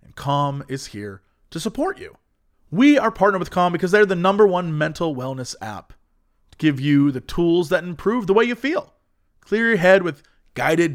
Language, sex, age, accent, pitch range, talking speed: English, male, 30-49, American, 125-180 Hz, 195 wpm